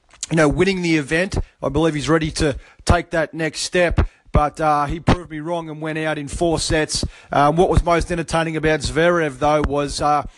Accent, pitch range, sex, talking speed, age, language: Australian, 140-165 Hz, male, 210 wpm, 30-49, English